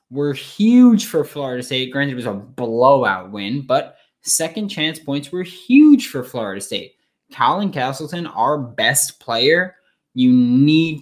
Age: 10-29